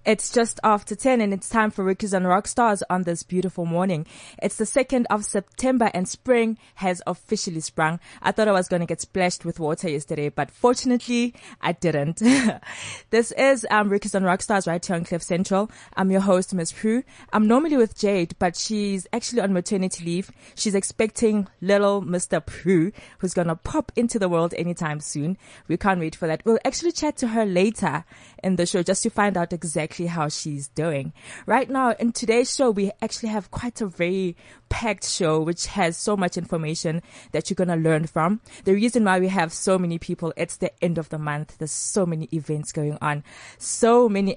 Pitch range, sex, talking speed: 165-210 Hz, female, 200 wpm